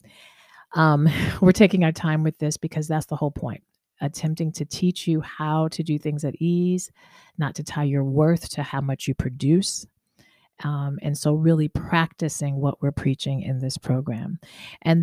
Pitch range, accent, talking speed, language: 140-165 Hz, American, 175 wpm, English